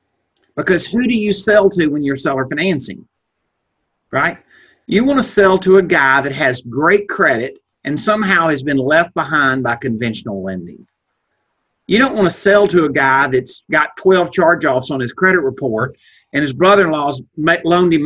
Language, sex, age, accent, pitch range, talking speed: English, male, 50-69, American, 140-195 Hz, 175 wpm